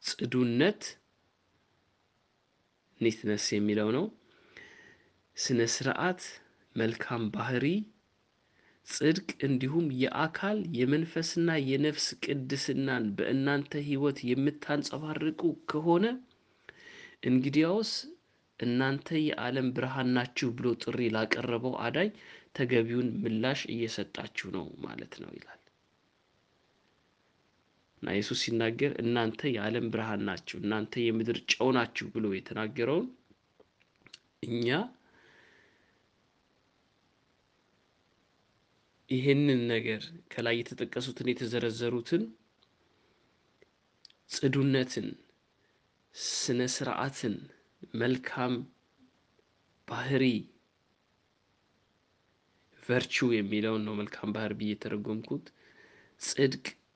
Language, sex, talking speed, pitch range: Amharic, male, 65 wpm, 115-145 Hz